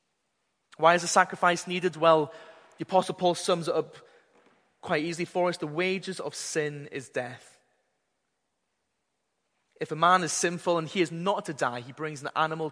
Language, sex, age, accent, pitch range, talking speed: English, male, 20-39, British, 140-175 Hz, 175 wpm